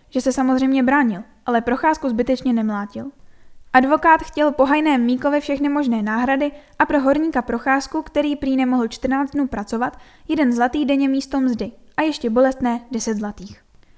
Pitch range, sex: 235-290 Hz, female